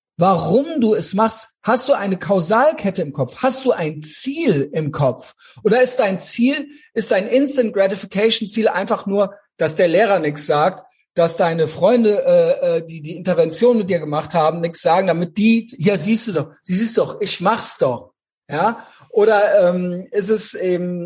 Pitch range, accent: 170-230 Hz, German